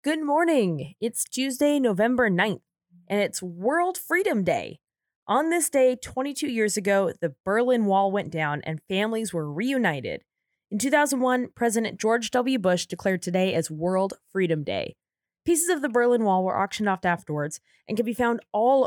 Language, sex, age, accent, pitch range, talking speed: English, female, 20-39, American, 175-250 Hz, 165 wpm